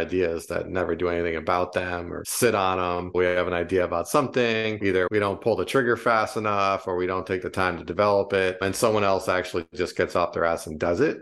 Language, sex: English, male